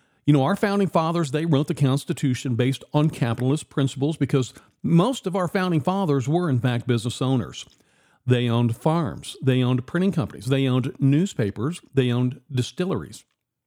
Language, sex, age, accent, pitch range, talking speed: English, male, 50-69, American, 120-155 Hz, 165 wpm